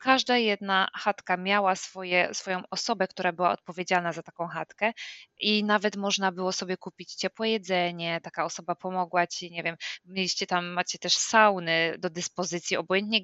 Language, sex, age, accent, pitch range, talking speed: English, female, 20-39, Polish, 180-205 Hz, 155 wpm